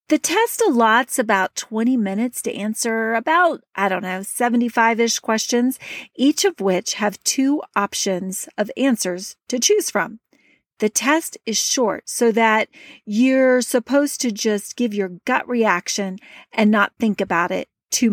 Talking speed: 150 wpm